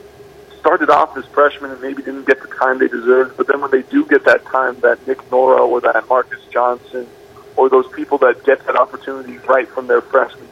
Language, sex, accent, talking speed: English, male, American, 215 wpm